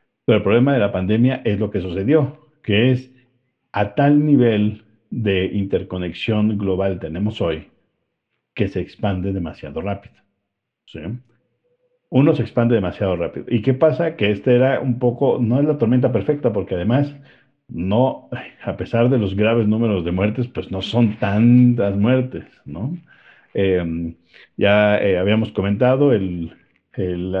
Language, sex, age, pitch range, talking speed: Spanish, male, 50-69, 100-120 Hz, 150 wpm